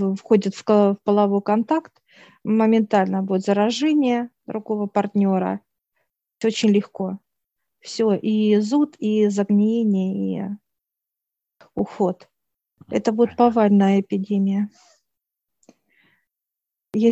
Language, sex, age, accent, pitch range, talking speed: Russian, female, 40-59, native, 195-215 Hz, 85 wpm